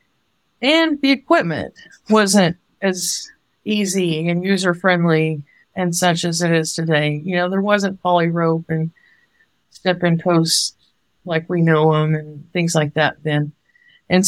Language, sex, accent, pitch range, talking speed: English, female, American, 165-195 Hz, 140 wpm